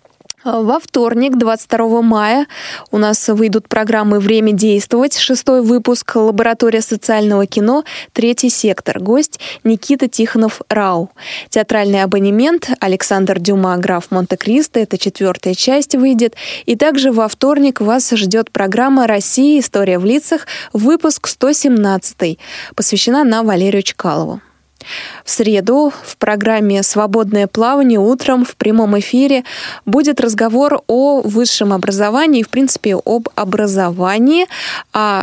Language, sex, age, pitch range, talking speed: Russian, female, 20-39, 200-255 Hz, 115 wpm